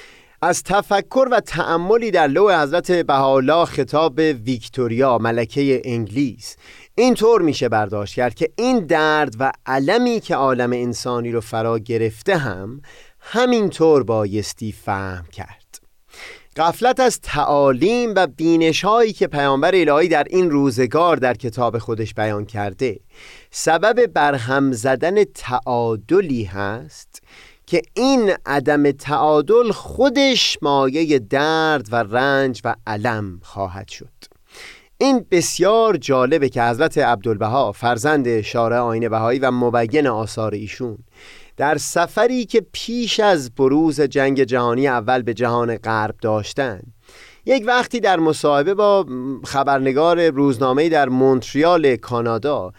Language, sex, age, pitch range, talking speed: Persian, male, 30-49, 120-175 Hz, 120 wpm